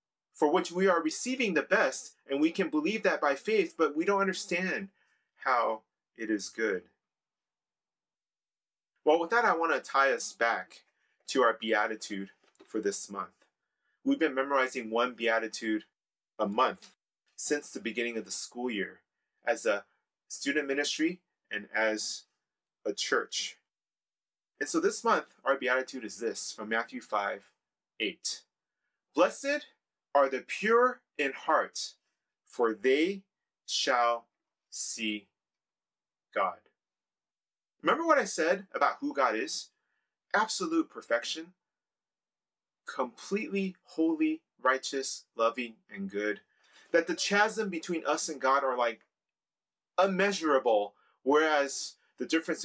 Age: 30-49